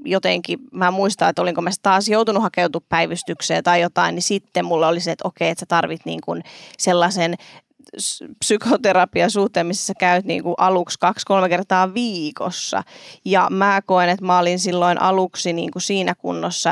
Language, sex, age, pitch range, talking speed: Finnish, female, 20-39, 175-195 Hz, 170 wpm